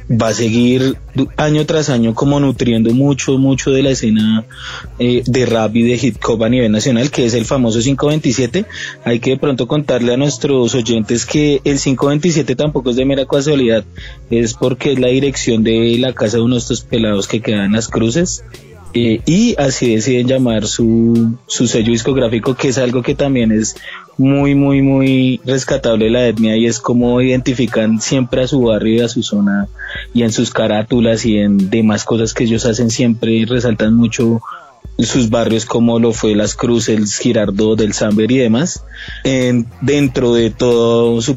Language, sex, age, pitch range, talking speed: Spanish, male, 20-39, 110-130 Hz, 185 wpm